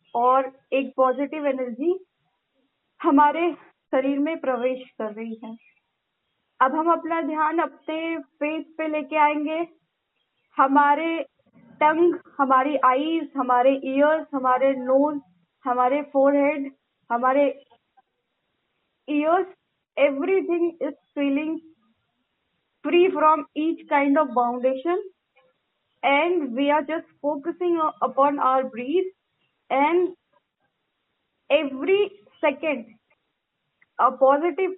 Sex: female